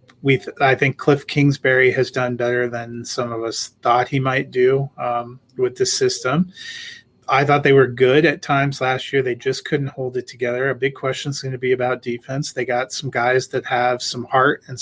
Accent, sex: American, male